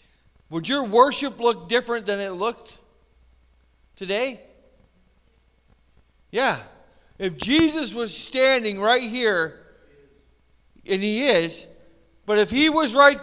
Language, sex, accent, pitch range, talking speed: English, male, American, 165-260 Hz, 110 wpm